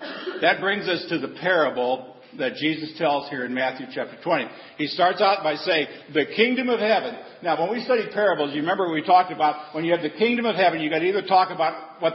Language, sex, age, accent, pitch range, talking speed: English, male, 50-69, American, 150-200 Hz, 230 wpm